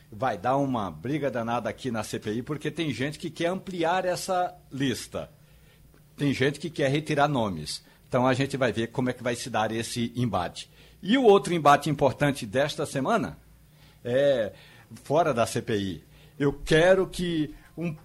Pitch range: 130-160 Hz